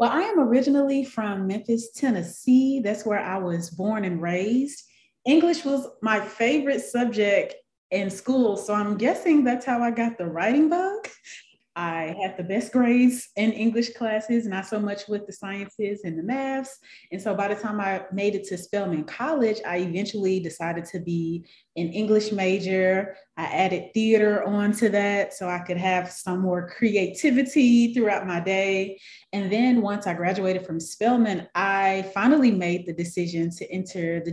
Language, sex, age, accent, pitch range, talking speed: English, female, 30-49, American, 180-235 Hz, 170 wpm